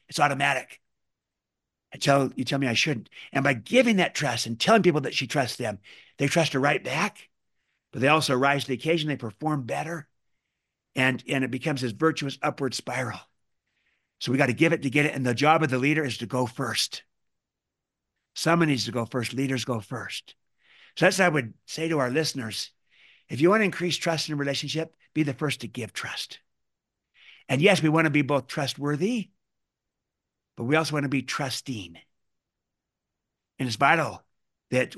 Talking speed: 195 wpm